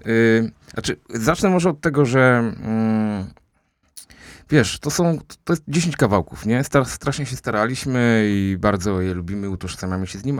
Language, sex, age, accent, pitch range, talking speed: Polish, male, 30-49, native, 95-120 Hz, 155 wpm